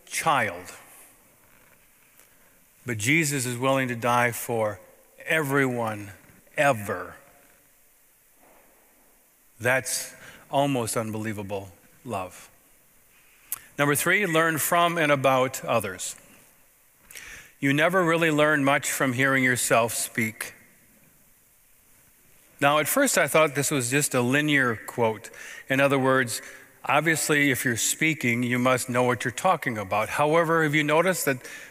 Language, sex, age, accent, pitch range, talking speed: English, male, 40-59, American, 120-150 Hz, 115 wpm